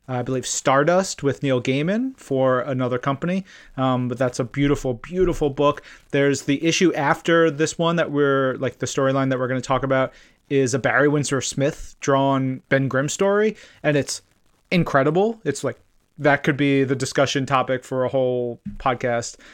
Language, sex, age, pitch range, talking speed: English, male, 30-49, 130-150 Hz, 175 wpm